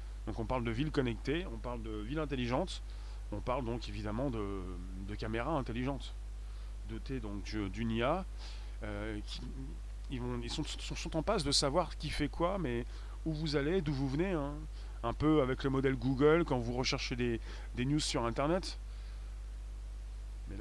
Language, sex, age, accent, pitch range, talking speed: French, male, 30-49, French, 110-150 Hz, 175 wpm